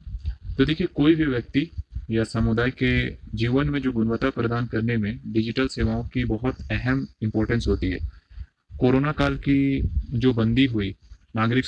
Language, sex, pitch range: Hindi, male, 105-130 Hz